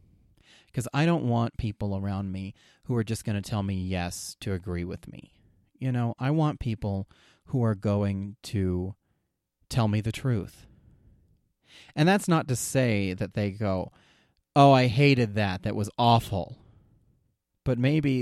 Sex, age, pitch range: male, 30-49, 100-130 Hz